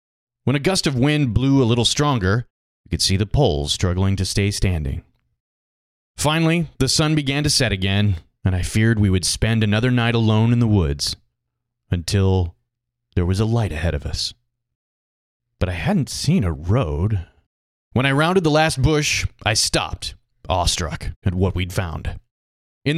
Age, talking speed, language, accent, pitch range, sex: 30-49, 170 wpm, English, American, 90-120 Hz, male